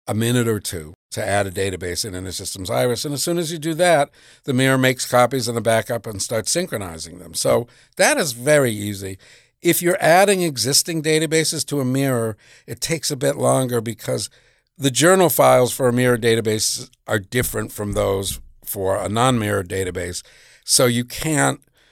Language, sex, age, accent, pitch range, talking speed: English, male, 50-69, American, 105-135 Hz, 185 wpm